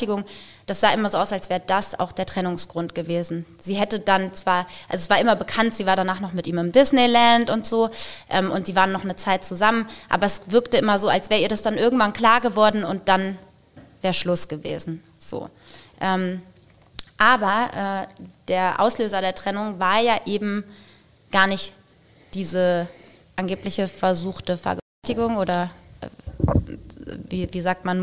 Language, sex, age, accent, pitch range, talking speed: German, female, 20-39, German, 180-215 Hz, 170 wpm